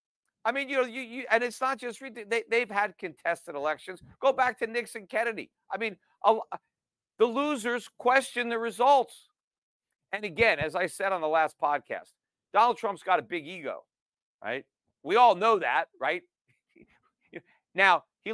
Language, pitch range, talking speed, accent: English, 190-245 Hz, 150 wpm, American